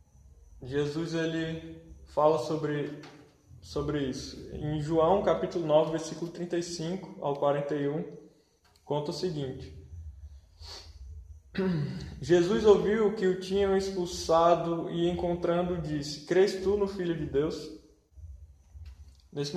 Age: 20-39